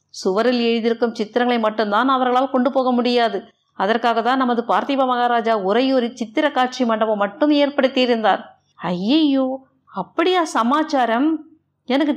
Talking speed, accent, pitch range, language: 115 wpm, native, 220-270 Hz, Tamil